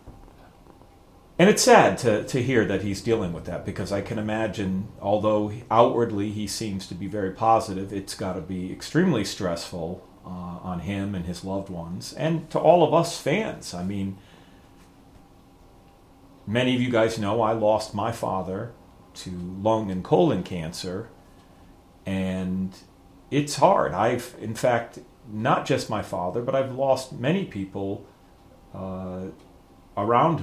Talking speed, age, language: 150 wpm, 40-59, English